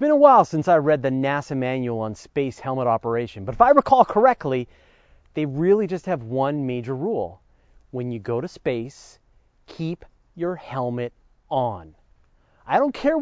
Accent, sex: American, male